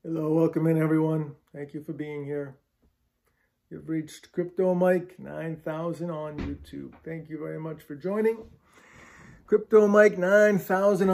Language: English